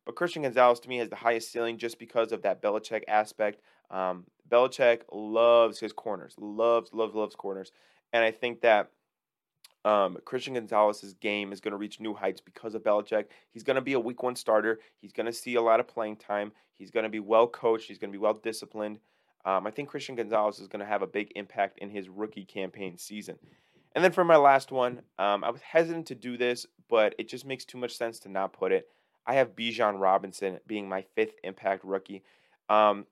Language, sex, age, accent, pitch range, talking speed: English, male, 30-49, American, 105-125 Hz, 220 wpm